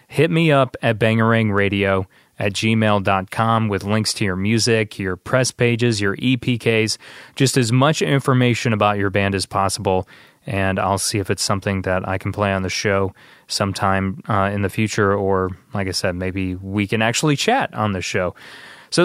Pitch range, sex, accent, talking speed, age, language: 100-125 Hz, male, American, 180 wpm, 20-39, English